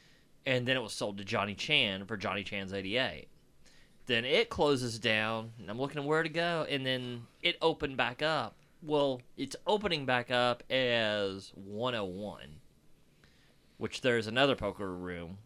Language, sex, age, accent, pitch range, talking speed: English, male, 30-49, American, 100-140 Hz, 165 wpm